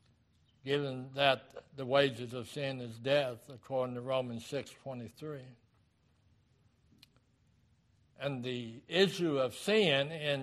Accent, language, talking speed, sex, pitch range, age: American, English, 105 wpm, male, 115-140 Hz, 60-79